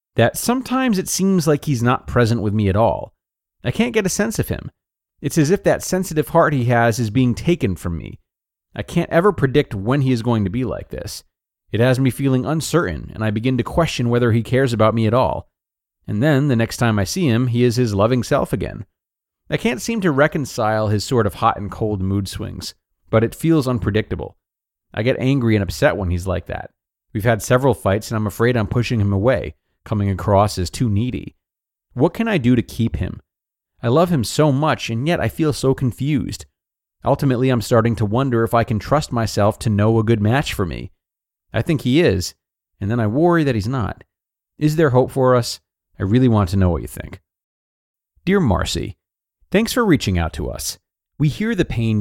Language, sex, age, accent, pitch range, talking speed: English, male, 30-49, American, 100-135 Hz, 215 wpm